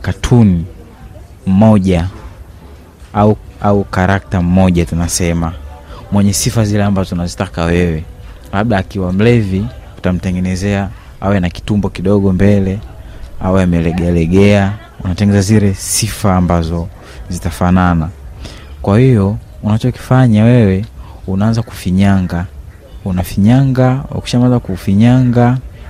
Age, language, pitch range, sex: 30-49, Swahili, 90-110 Hz, male